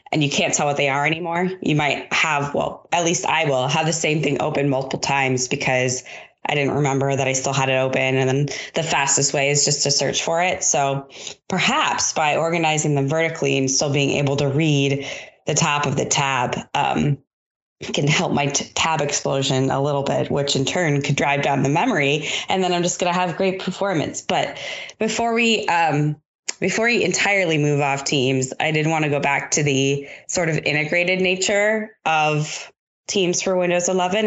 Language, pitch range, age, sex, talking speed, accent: English, 135-160 Hz, 20-39, female, 200 wpm, American